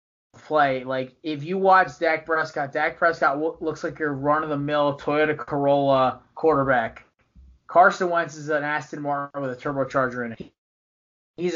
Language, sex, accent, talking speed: English, male, American, 150 wpm